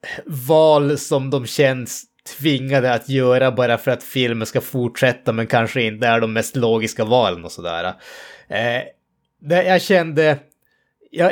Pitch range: 115-140 Hz